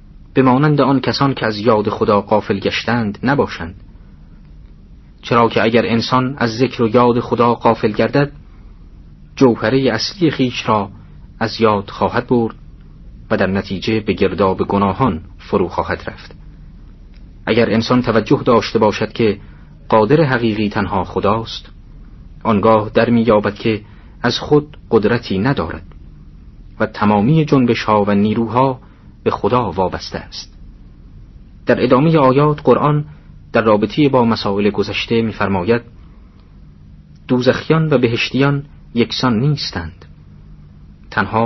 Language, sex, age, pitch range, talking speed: Persian, male, 40-59, 95-125 Hz, 115 wpm